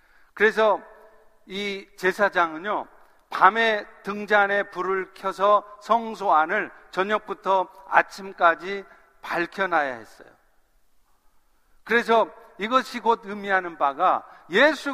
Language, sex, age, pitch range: Korean, male, 50-69, 185-225 Hz